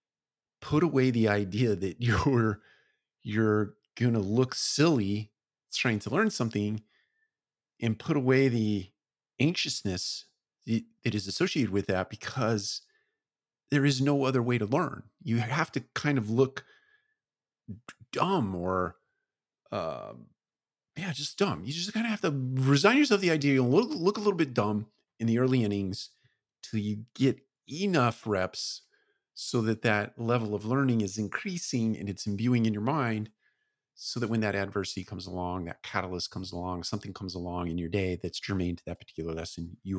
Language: English